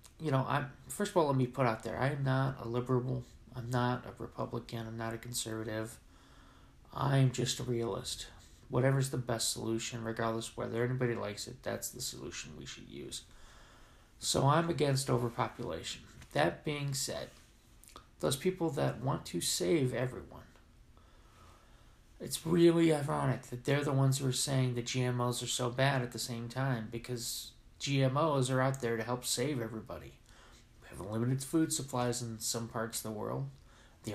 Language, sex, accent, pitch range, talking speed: English, male, American, 115-130 Hz, 170 wpm